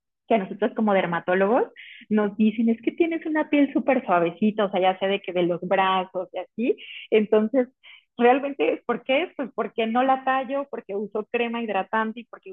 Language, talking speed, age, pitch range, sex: Spanish, 190 wpm, 30-49, 185-230 Hz, female